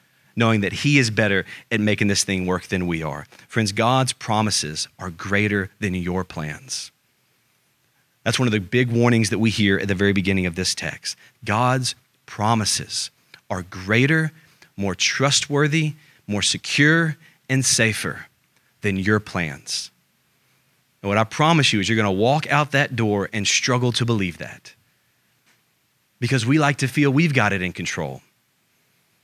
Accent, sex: American, male